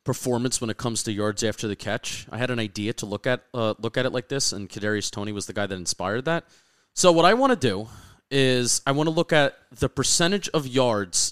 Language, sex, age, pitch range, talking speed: English, male, 30-49, 110-170 Hz, 250 wpm